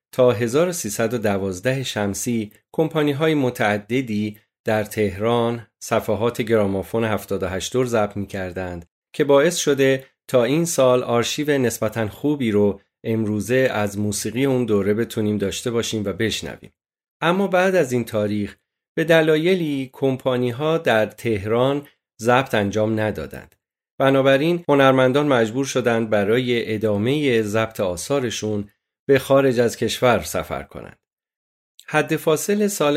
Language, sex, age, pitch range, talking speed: Persian, male, 40-59, 105-135 Hz, 115 wpm